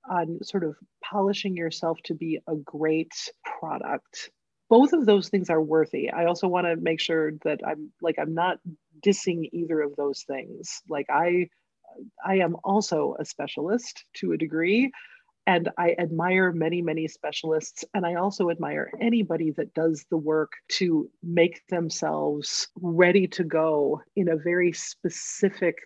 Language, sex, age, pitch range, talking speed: English, female, 40-59, 155-195 Hz, 155 wpm